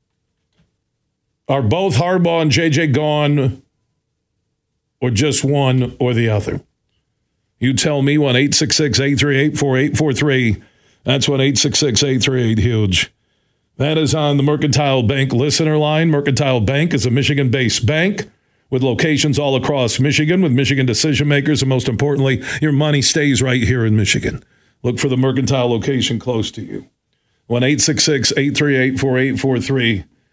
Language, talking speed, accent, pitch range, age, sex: English, 120 wpm, American, 125-150 Hz, 50-69, male